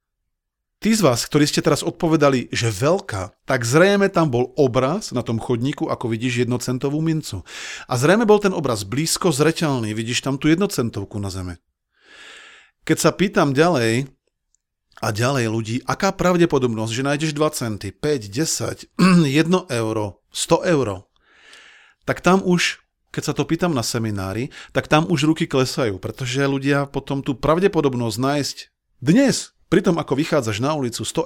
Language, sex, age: Slovak, male, 40-59